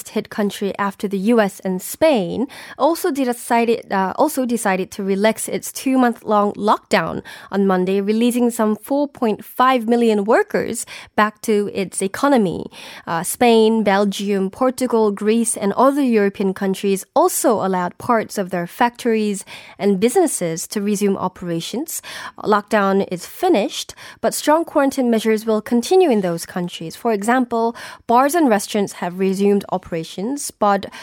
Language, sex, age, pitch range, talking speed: English, female, 20-39, 195-240 Hz, 130 wpm